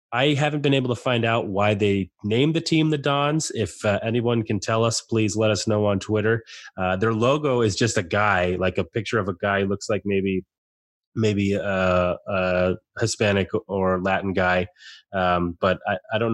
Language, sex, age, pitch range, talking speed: English, male, 20-39, 95-110 Hz, 200 wpm